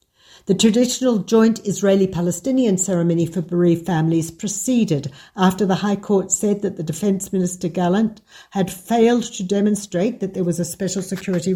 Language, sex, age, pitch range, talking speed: Hebrew, female, 60-79, 170-205 Hz, 150 wpm